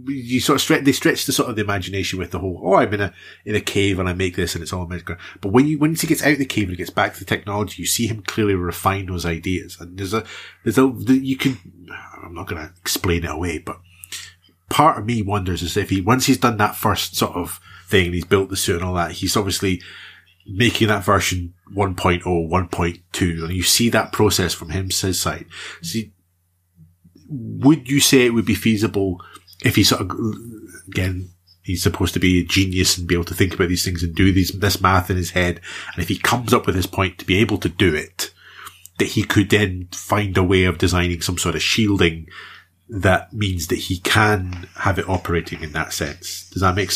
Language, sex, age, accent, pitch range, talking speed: English, male, 30-49, British, 90-105 Hz, 230 wpm